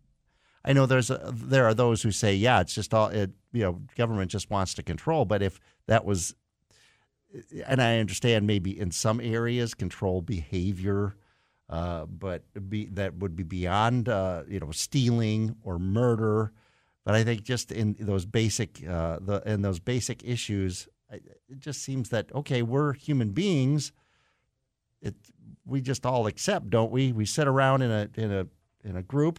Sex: male